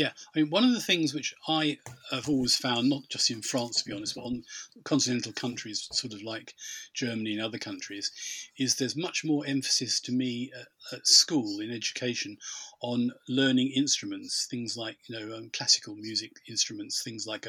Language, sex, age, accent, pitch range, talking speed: English, male, 40-59, British, 115-140 Hz, 190 wpm